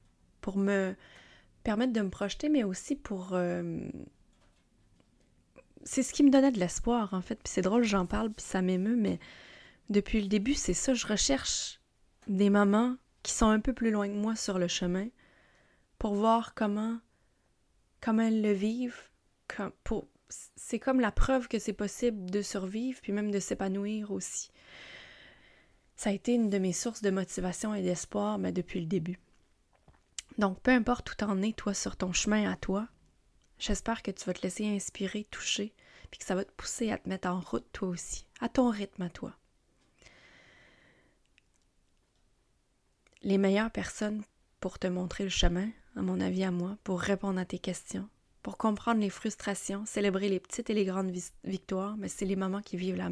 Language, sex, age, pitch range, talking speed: French, female, 20-39, 185-220 Hz, 180 wpm